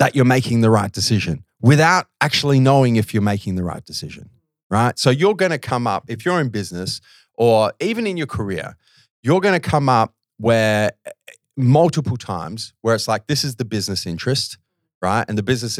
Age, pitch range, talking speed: 30-49, 105-125 Hz, 195 wpm